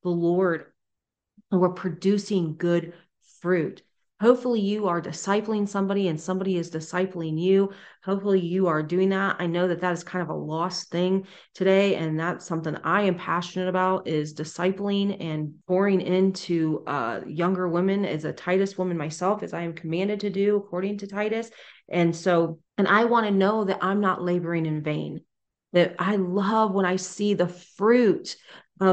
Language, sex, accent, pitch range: English, female, American, 170-200 Hz